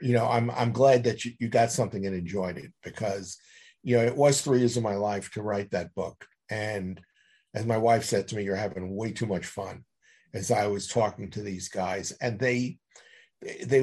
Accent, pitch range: American, 95-125 Hz